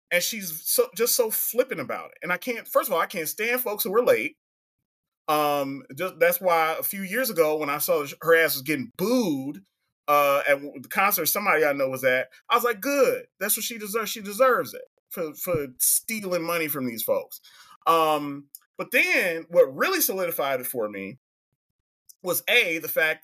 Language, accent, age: English, American, 30-49